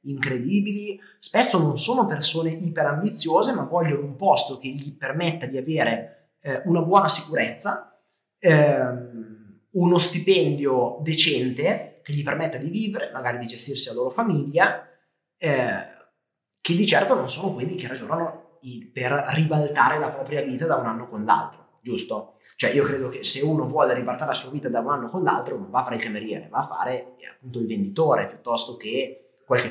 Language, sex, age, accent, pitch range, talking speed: Italian, male, 30-49, native, 140-195 Hz, 175 wpm